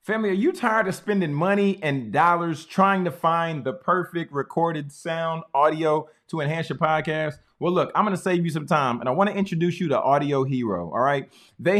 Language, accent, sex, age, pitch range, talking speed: English, American, male, 20-39, 145-190 Hz, 205 wpm